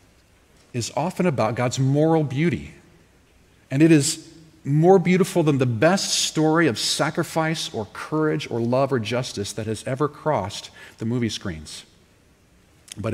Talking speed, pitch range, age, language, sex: 140 wpm, 105-155 Hz, 40-59, English, male